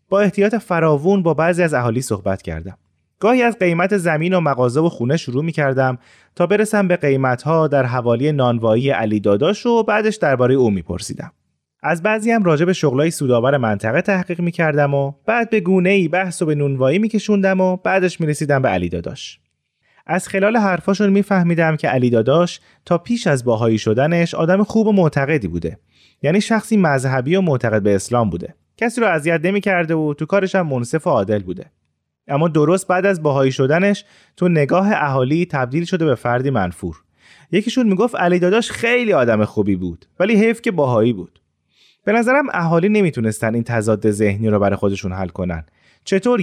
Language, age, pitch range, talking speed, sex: Persian, 30-49, 115-190 Hz, 180 wpm, male